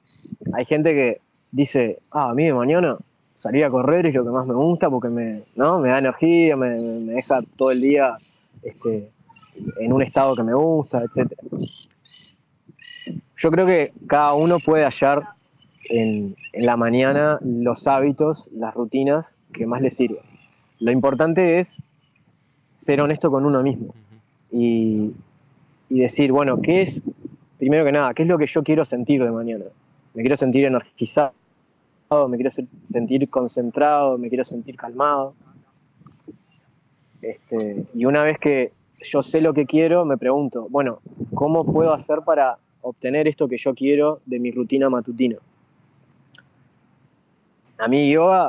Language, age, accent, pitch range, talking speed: English, 20-39, Argentinian, 125-150 Hz, 150 wpm